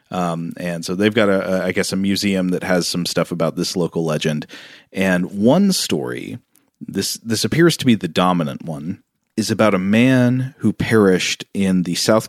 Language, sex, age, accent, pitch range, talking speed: English, male, 30-49, American, 85-110 Hz, 190 wpm